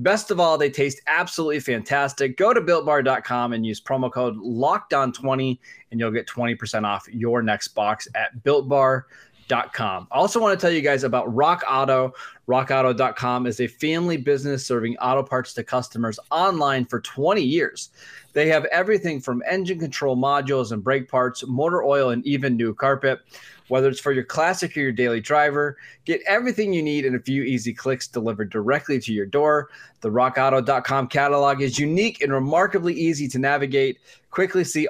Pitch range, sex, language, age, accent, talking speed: 120-150 Hz, male, English, 20-39, American, 170 wpm